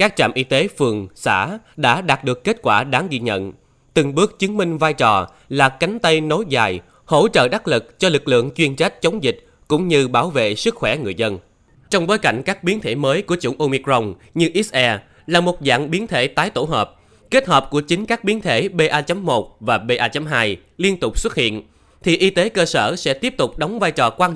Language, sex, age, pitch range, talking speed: Vietnamese, male, 20-39, 120-175 Hz, 220 wpm